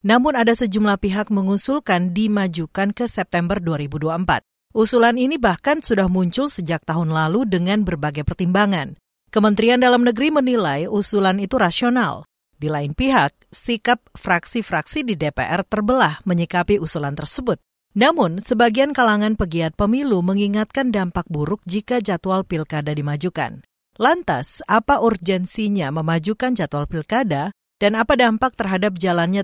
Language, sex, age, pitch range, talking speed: Indonesian, female, 40-59, 165-230 Hz, 125 wpm